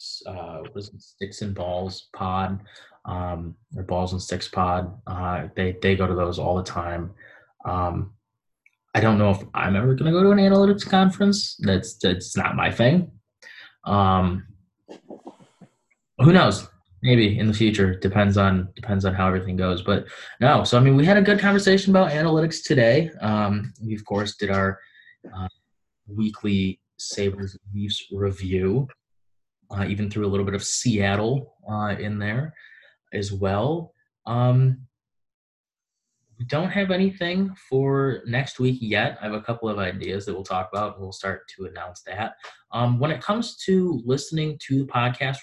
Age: 20-39